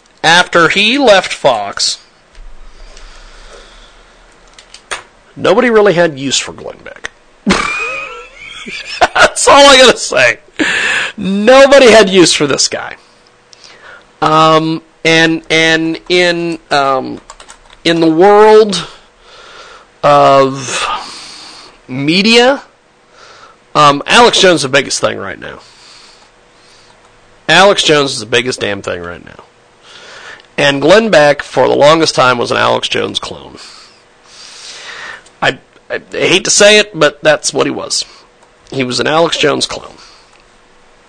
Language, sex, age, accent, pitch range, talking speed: English, male, 40-59, American, 140-220 Hz, 115 wpm